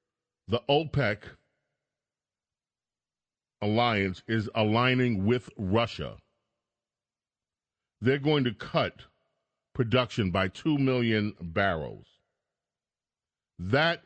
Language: English